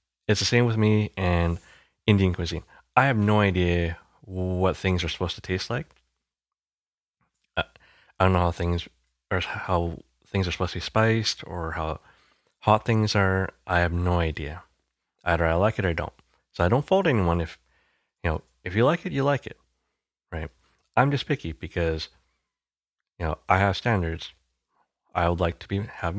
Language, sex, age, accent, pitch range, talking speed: English, male, 30-49, American, 80-115 Hz, 185 wpm